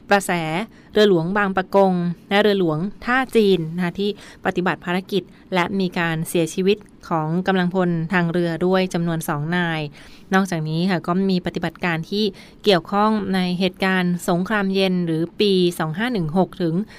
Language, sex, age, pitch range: Thai, female, 20-39, 170-200 Hz